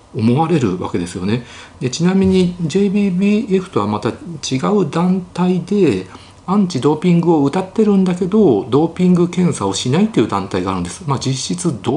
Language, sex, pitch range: Japanese, male, 90-135 Hz